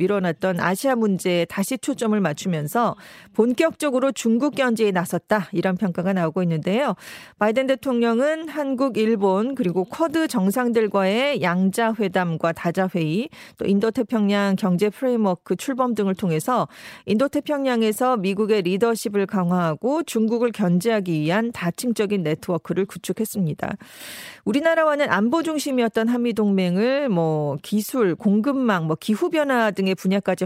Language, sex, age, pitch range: Korean, female, 40-59, 185-250 Hz